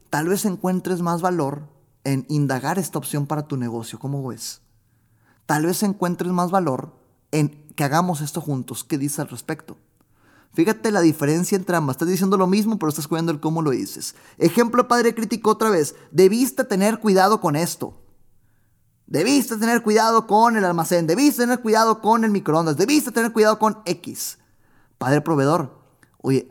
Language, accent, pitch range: Spanish, Mexican, 140-210 Hz